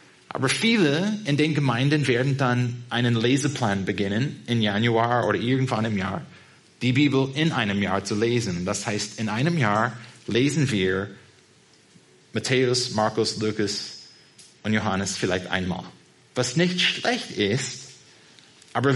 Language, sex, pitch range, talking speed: German, male, 115-150 Hz, 135 wpm